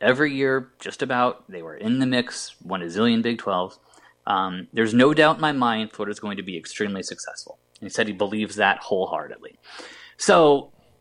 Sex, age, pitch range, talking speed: male, 20-39, 95-140 Hz, 185 wpm